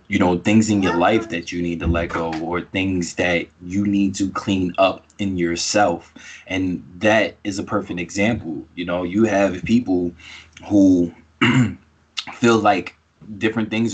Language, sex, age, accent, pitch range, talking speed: English, male, 20-39, American, 85-110 Hz, 165 wpm